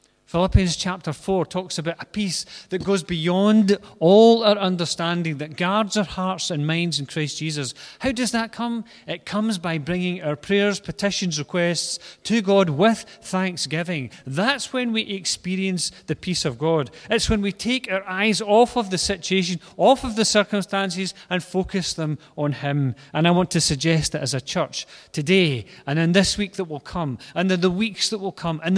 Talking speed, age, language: 190 wpm, 40-59, English